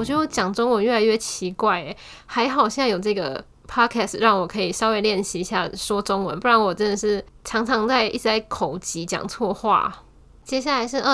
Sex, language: female, Chinese